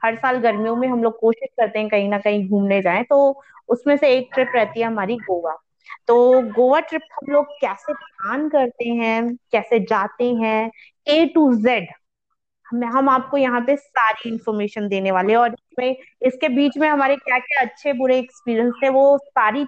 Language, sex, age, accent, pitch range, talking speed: Hindi, female, 20-39, native, 225-280 Hz, 185 wpm